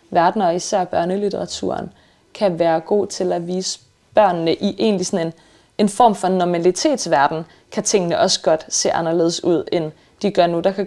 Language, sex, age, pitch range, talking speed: English, female, 30-49, 170-205 Hz, 175 wpm